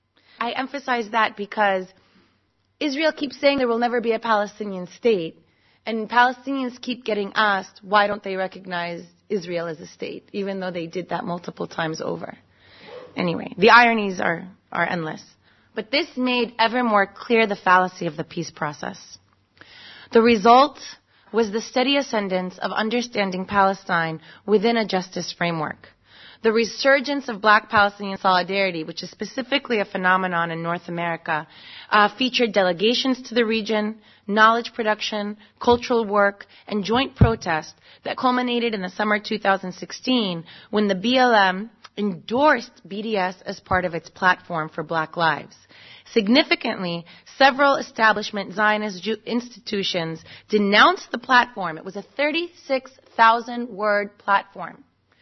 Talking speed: 135 wpm